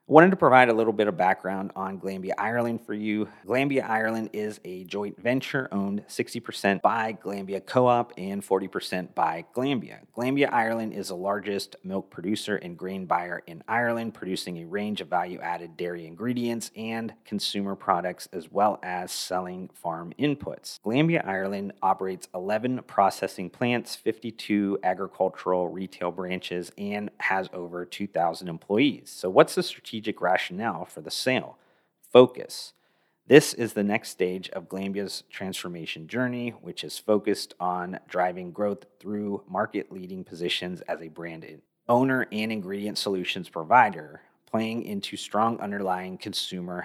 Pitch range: 95-115 Hz